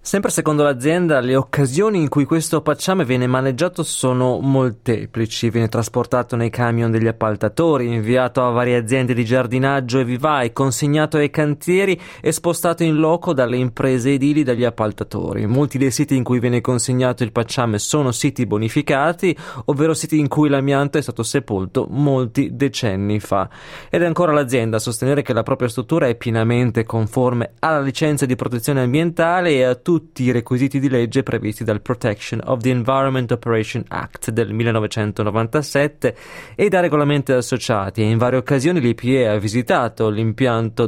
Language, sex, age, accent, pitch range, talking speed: Italian, male, 20-39, native, 115-145 Hz, 160 wpm